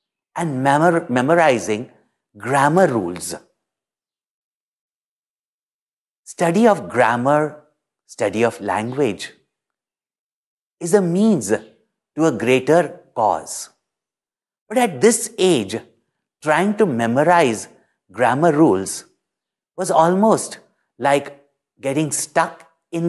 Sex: male